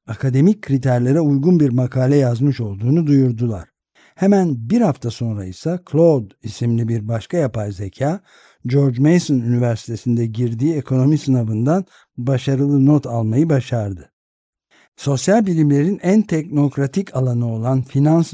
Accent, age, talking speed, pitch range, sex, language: native, 60-79, 120 wpm, 115-155 Hz, male, Turkish